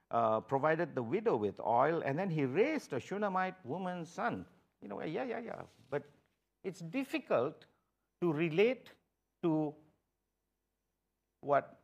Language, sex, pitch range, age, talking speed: English, male, 110-170 Hz, 50-69, 130 wpm